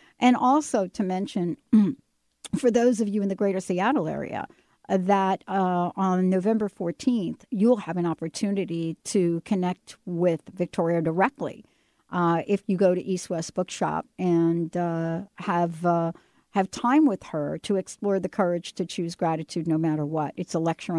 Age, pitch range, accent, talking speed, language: 60-79, 170-200 Hz, American, 160 wpm, English